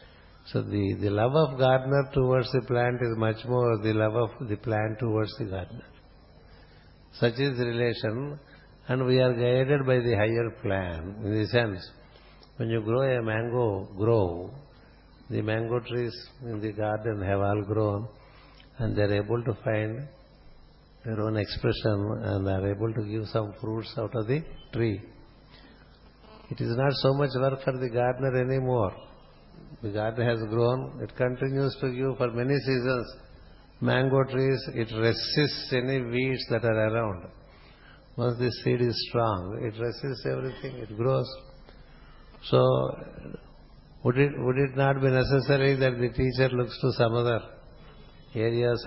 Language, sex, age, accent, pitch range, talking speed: Telugu, male, 60-79, native, 110-130 Hz, 155 wpm